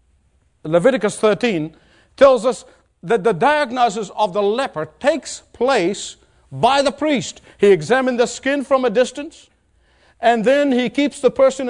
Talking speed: 145 wpm